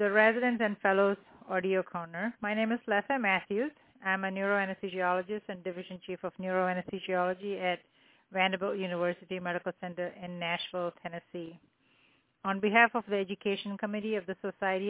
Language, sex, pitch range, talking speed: English, female, 180-210 Hz, 145 wpm